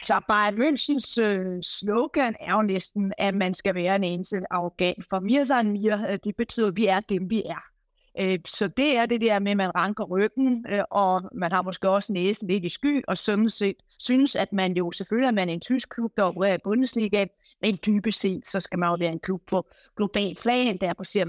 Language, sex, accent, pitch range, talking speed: Danish, female, native, 175-210 Hz, 225 wpm